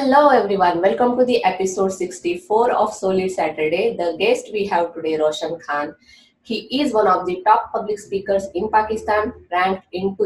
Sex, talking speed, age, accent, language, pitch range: female, 170 wpm, 20-39, Indian, English, 165-230 Hz